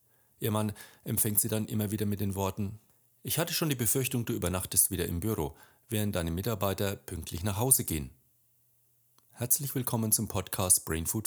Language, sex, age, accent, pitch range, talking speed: German, male, 40-59, German, 95-120 Hz, 175 wpm